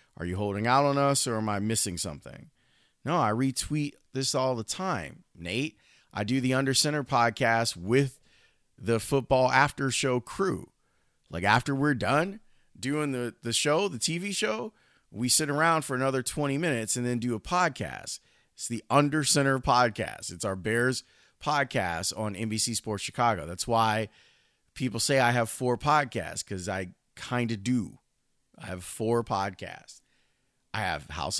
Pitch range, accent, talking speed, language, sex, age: 105-135 Hz, American, 165 wpm, English, male, 30-49